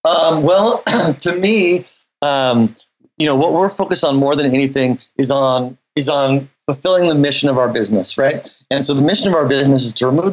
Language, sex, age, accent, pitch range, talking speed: English, male, 30-49, American, 130-155 Hz, 205 wpm